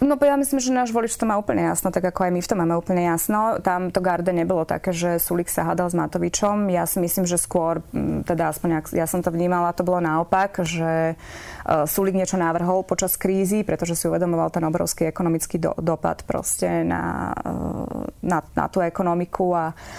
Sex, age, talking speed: female, 20-39, 190 wpm